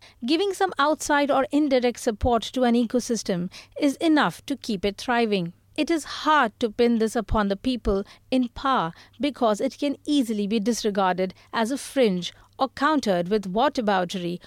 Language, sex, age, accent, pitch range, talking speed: English, female, 50-69, Indian, 200-275 Hz, 160 wpm